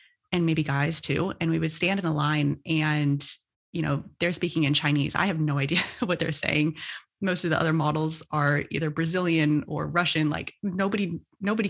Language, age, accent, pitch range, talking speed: English, 20-39, American, 150-170 Hz, 195 wpm